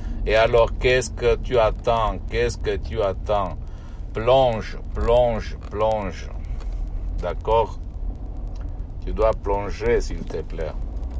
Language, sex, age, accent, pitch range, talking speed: Italian, male, 60-79, native, 80-105 Hz, 105 wpm